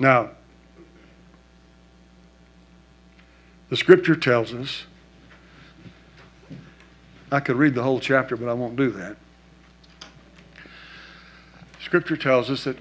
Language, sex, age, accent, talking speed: English, male, 60-79, American, 95 wpm